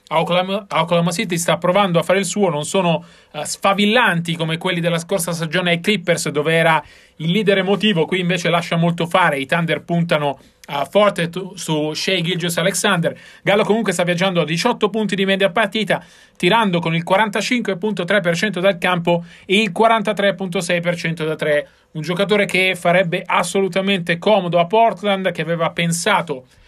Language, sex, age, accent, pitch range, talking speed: Italian, male, 40-59, native, 165-200 Hz, 160 wpm